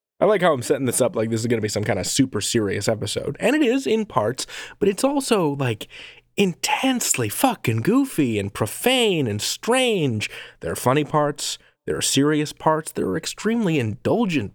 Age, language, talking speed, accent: 30-49, English, 195 wpm, American